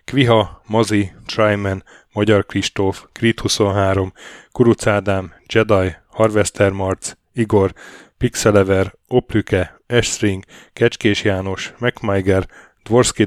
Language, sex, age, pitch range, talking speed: Hungarian, male, 10-29, 95-115 Hz, 85 wpm